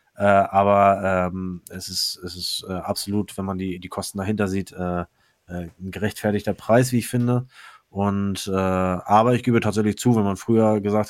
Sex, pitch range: male, 100-120 Hz